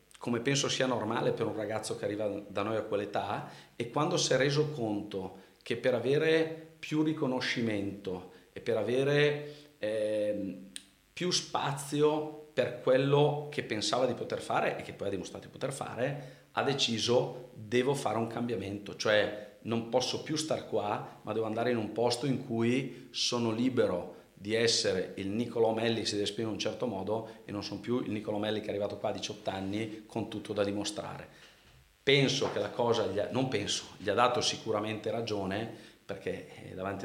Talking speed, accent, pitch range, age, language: 185 wpm, native, 95-125 Hz, 40-59, Italian